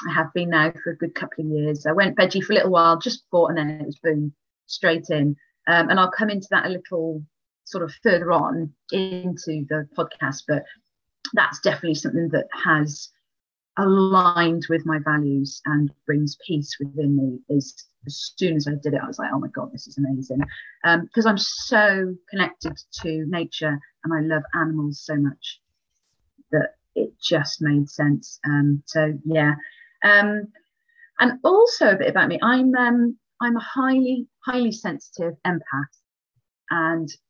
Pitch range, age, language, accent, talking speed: 150-200 Hz, 30-49, English, British, 175 wpm